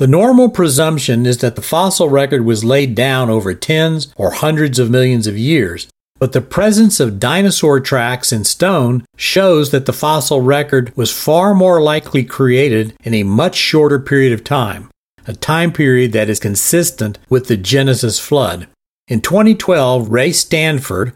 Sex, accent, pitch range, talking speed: male, American, 120-155 Hz, 165 wpm